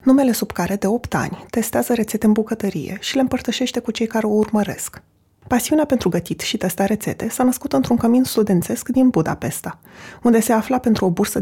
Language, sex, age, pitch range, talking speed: Romanian, female, 20-39, 190-240 Hz, 195 wpm